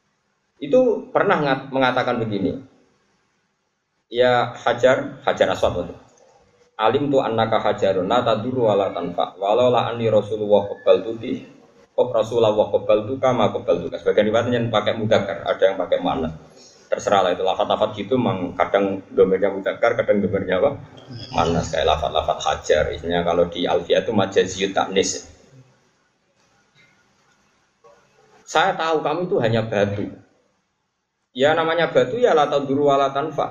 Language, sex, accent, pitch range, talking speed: Indonesian, male, native, 120-195 Hz, 135 wpm